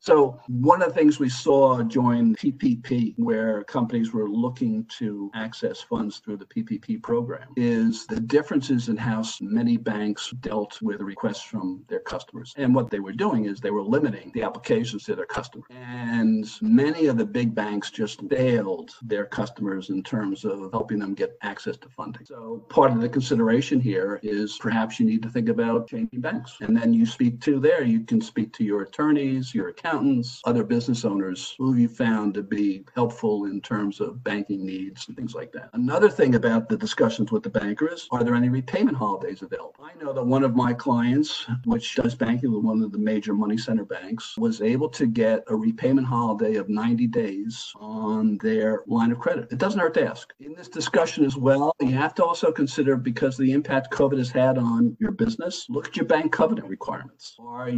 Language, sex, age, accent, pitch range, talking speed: English, male, 50-69, American, 110-170 Hz, 200 wpm